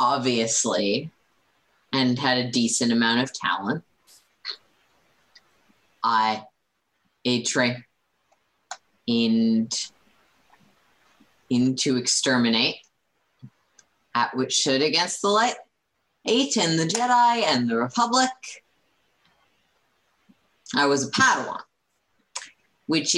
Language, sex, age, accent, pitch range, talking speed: English, female, 30-49, American, 115-155 Hz, 85 wpm